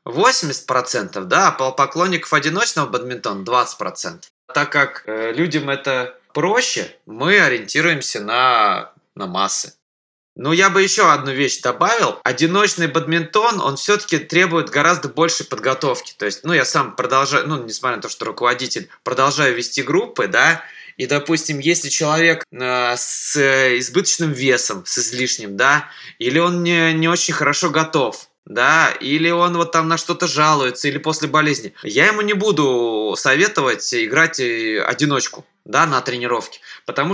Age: 20-39